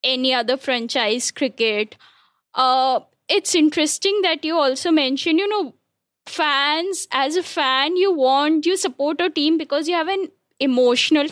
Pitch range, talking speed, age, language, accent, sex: 260-320 Hz, 150 wpm, 10-29, English, Indian, female